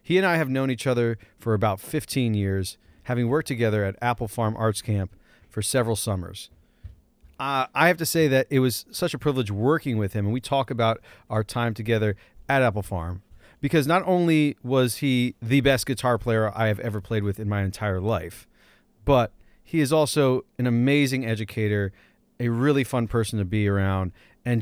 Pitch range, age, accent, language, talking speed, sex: 105-130 Hz, 30-49, American, English, 195 wpm, male